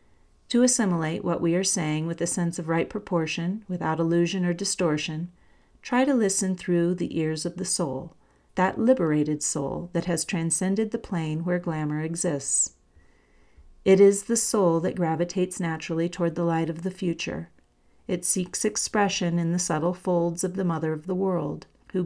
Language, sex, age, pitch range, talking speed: English, female, 40-59, 160-190 Hz, 170 wpm